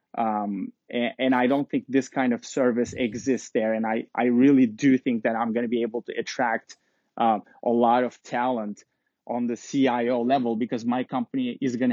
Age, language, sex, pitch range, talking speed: 20-39, English, male, 110-135 Hz, 200 wpm